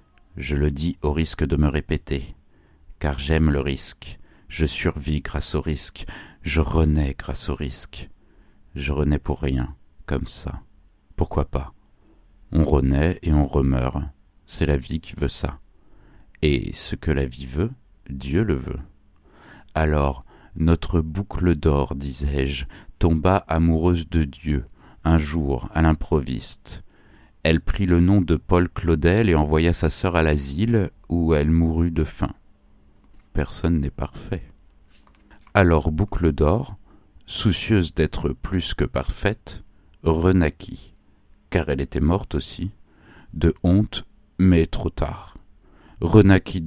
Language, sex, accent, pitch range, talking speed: French, male, French, 70-85 Hz, 135 wpm